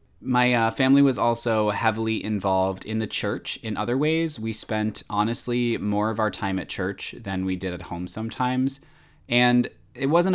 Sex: male